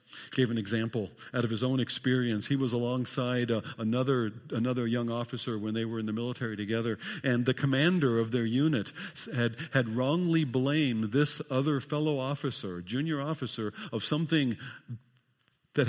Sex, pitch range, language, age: male, 120-150 Hz, English, 50-69